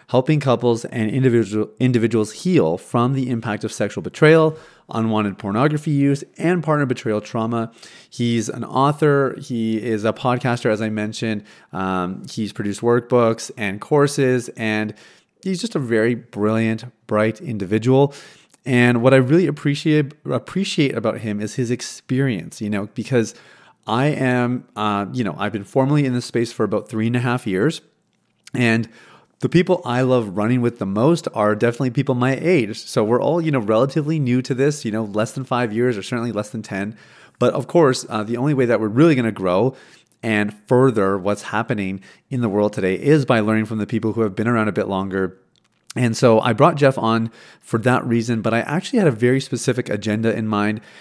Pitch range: 110-135 Hz